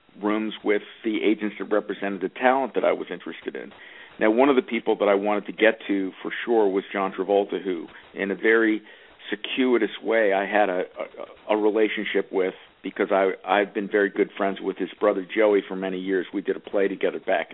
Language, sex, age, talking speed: English, male, 50-69, 210 wpm